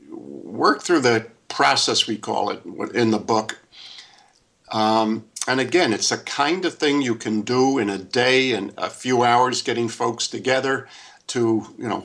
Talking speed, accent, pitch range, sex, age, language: 170 wpm, American, 110-130 Hz, male, 50-69, English